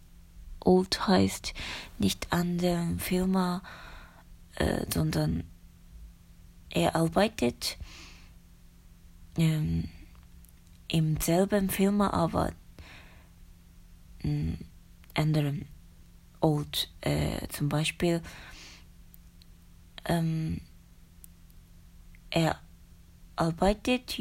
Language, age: Japanese, 20-39